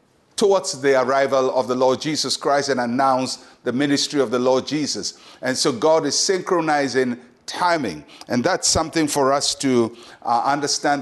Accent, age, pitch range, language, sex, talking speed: Nigerian, 50-69, 130-160 Hz, English, male, 165 wpm